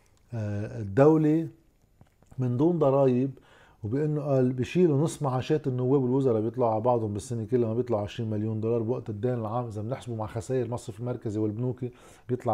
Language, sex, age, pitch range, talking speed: Arabic, male, 20-39, 110-130 Hz, 155 wpm